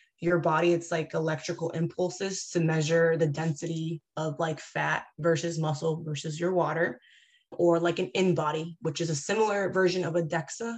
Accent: American